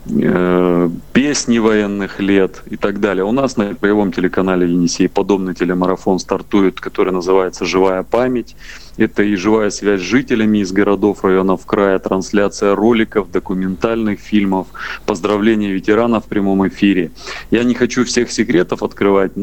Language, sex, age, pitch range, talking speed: Russian, male, 30-49, 95-110 Hz, 135 wpm